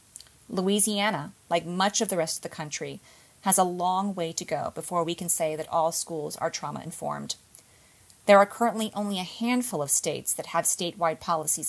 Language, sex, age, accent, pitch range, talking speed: English, female, 30-49, American, 160-200 Hz, 185 wpm